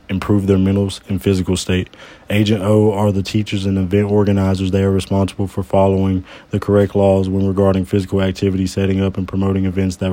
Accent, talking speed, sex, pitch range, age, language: American, 190 wpm, male, 95-100 Hz, 20-39, English